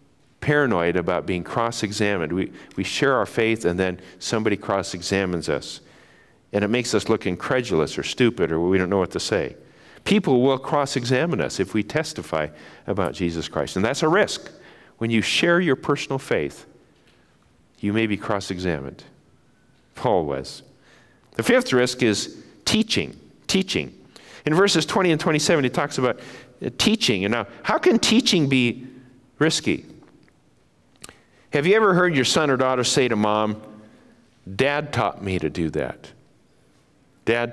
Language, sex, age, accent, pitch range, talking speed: English, male, 50-69, American, 100-135 Hz, 150 wpm